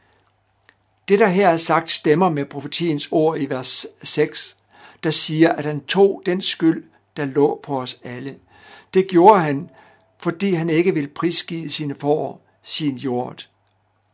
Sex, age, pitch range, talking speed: male, 60-79, 140-170 Hz, 155 wpm